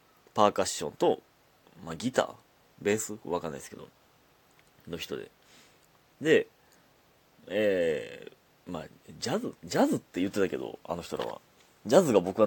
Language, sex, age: Japanese, male, 30-49